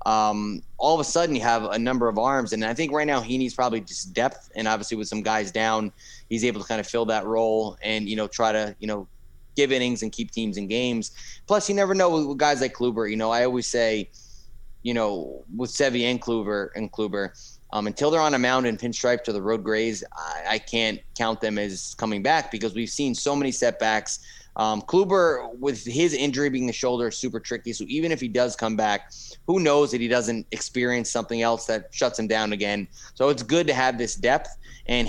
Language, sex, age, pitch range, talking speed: English, male, 20-39, 110-130 Hz, 225 wpm